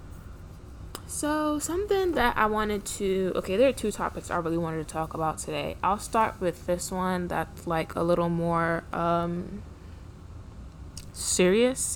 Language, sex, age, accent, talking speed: English, female, 10-29, American, 150 wpm